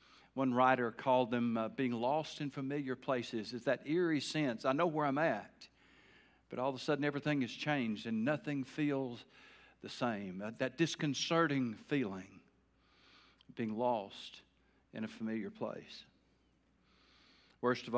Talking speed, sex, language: 145 wpm, male, English